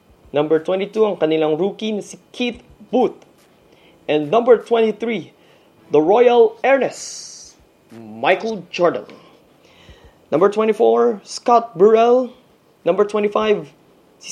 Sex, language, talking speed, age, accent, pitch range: male, Filipino, 95 wpm, 20-39, native, 150-220 Hz